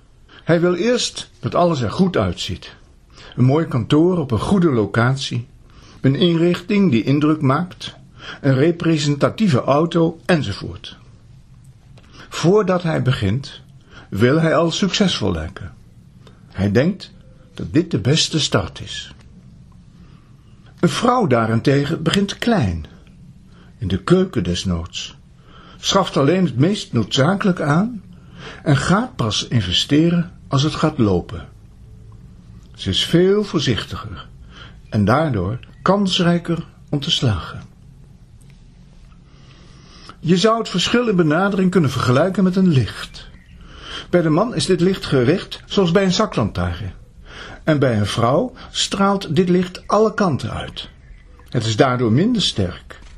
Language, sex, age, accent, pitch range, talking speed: Dutch, male, 60-79, Dutch, 115-180 Hz, 125 wpm